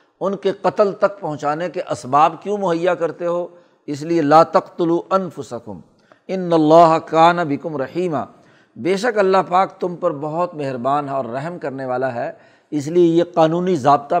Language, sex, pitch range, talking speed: Urdu, male, 150-185 Hz, 175 wpm